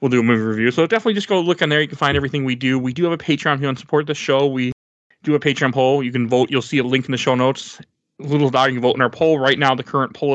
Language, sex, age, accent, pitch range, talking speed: English, male, 20-39, American, 130-155 Hz, 350 wpm